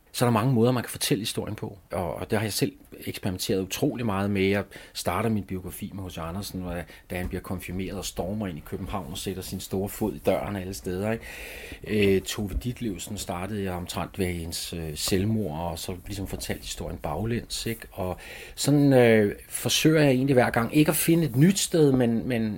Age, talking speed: 30-49, 215 wpm